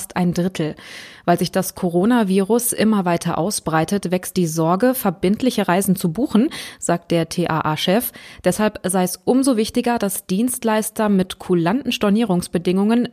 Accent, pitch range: German, 175-220 Hz